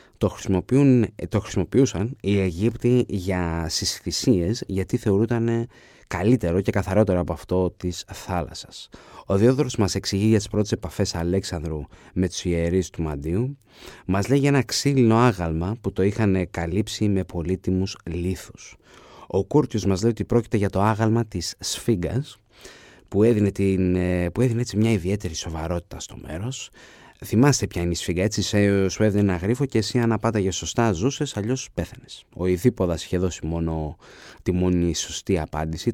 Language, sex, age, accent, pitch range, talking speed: Greek, male, 30-49, native, 90-115 Hz, 155 wpm